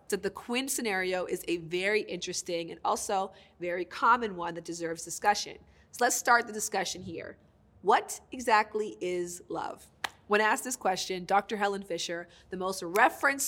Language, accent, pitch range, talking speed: English, American, 175-215 Hz, 165 wpm